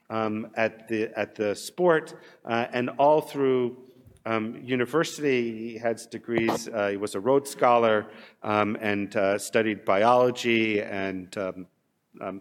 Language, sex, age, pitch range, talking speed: English, male, 50-69, 115-145 Hz, 140 wpm